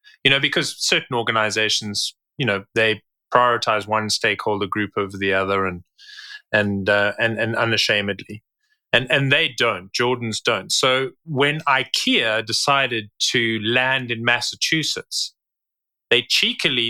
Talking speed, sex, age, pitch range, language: 130 wpm, male, 30-49, 110-130 Hz, English